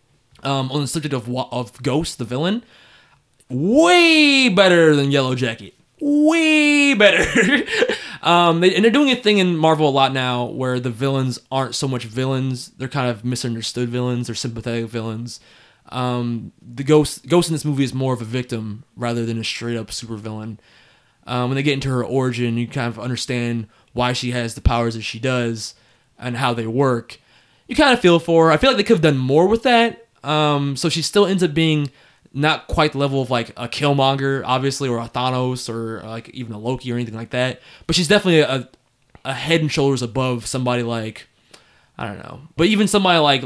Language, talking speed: English, 205 wpm